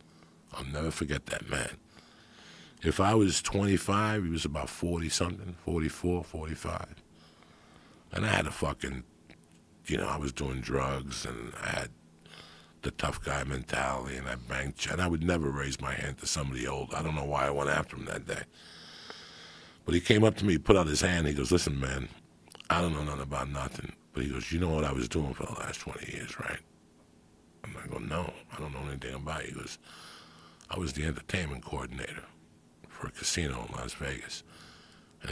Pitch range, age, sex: 70-85 Hz, 50-69, male